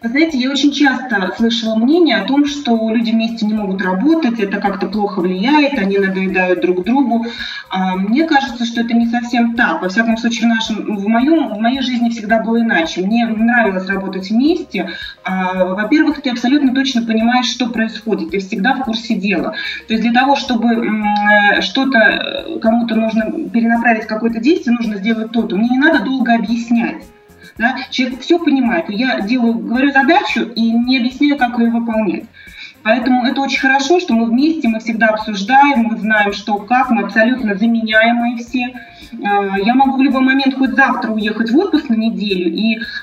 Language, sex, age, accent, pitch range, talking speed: Russian, female, 30-49, native, 210-260 Hz, 170 wpm